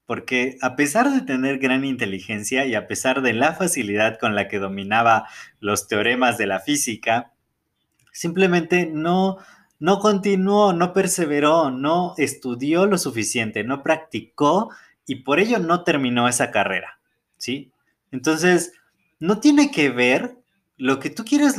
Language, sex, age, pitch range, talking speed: Spanish, male, 30-49, 120-175 Hz, 140 wpm